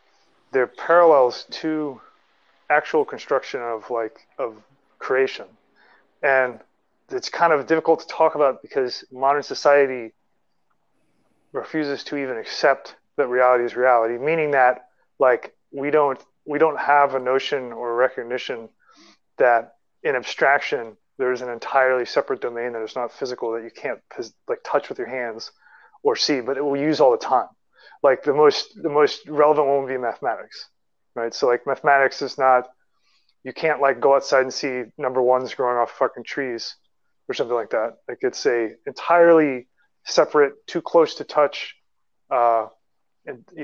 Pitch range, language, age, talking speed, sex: 125-155 Hz, English, 30-49, 155 wpm, male